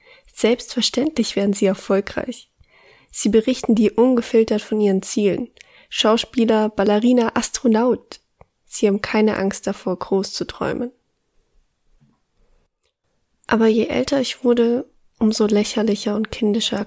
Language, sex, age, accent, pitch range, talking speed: German, female, 20-39, German, 205-235 Hz, 110 wpm